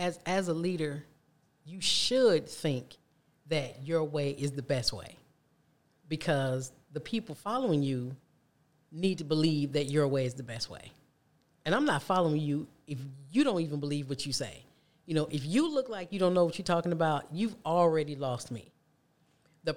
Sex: female